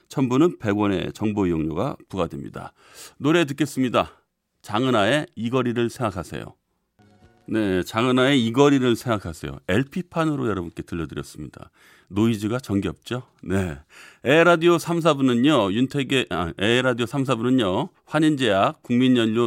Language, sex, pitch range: Korean, male, 100-135 Hz